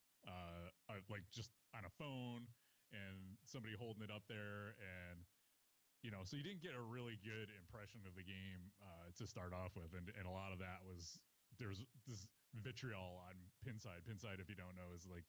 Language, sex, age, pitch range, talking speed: English, male, 30-49, 90-120 Hz, 195 wpm